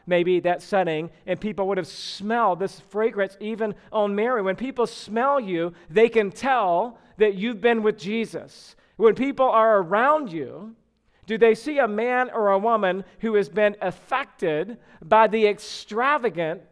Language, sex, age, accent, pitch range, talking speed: English, male, 40-59, American, 175-215 Hz, 160 wpm